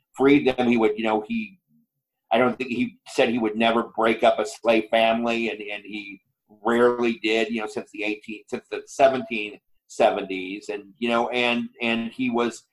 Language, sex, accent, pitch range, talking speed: English, male, American, 110-135 Hz, 190 wpm